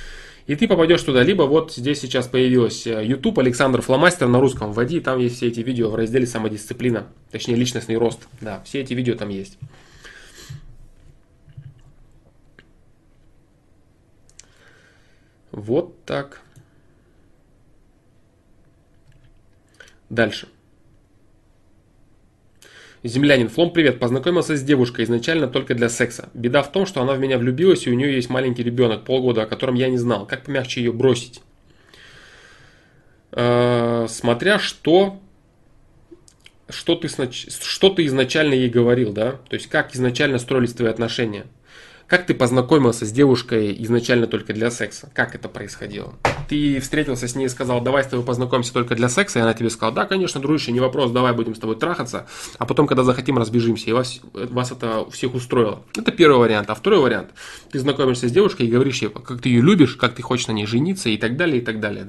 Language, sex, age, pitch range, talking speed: Russian, male, 20-39, 115-135 Hz, 160 wpm